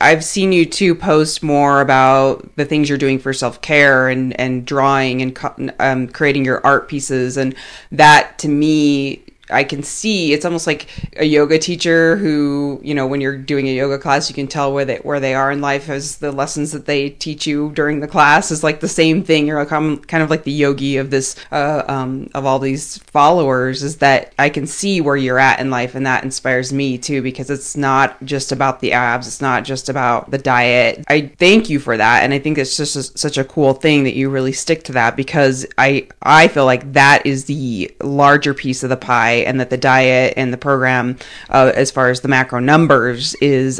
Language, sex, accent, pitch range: English, female, American, 130-155 Hz